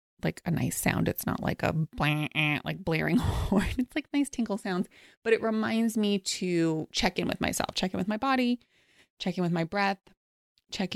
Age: 20-39